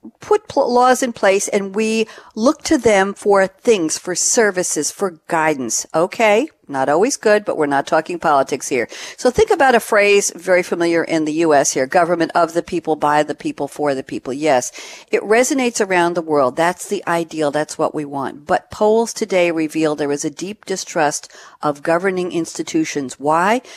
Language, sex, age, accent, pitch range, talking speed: English, female, 50-69, American, 155-220 Hz, 180 wpm